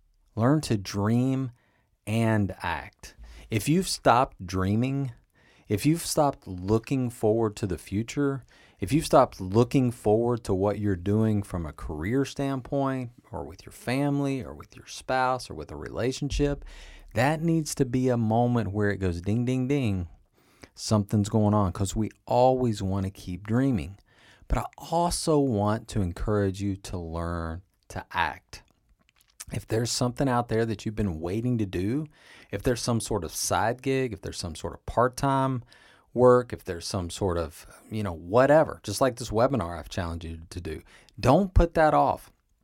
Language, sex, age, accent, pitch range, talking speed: English, male, 30-49, American, 95-130 Hz, 170 wpm